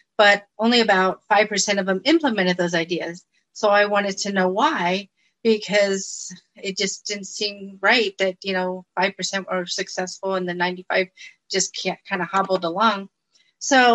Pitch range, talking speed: 185-210 Hz, 160 wpm